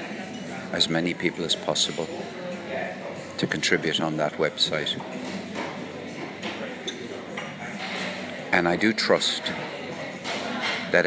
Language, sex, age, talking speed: English, male, 60-79, 80 wpm